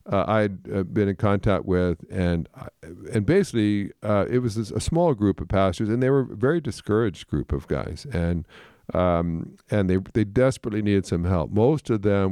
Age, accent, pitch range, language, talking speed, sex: 50-69, American, 90-115 Hz, English, 195 wpm, male